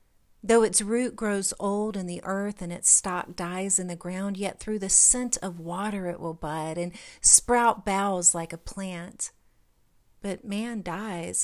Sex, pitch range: female, 180-215 Hz